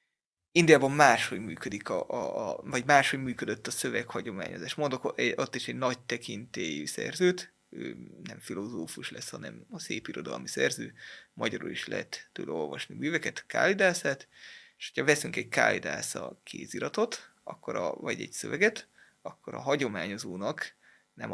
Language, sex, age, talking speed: Hungarian, male, 30-49, 130 wpm